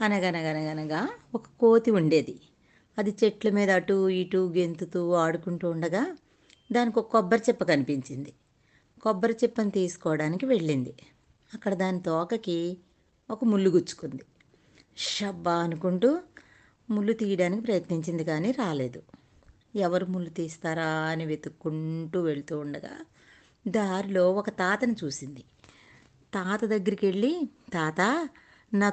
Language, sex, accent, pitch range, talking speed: Telugu, female, native, 170-225 Hz, 105 wpm